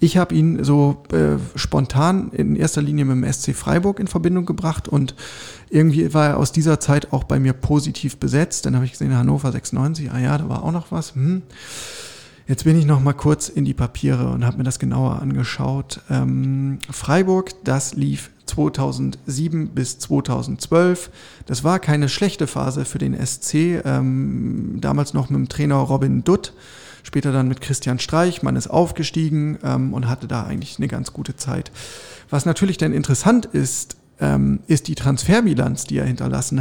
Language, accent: German, German